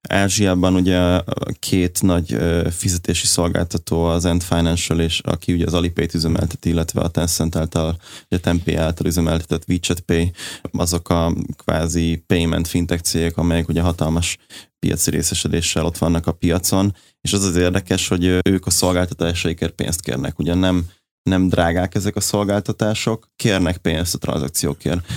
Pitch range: 85-95 Hz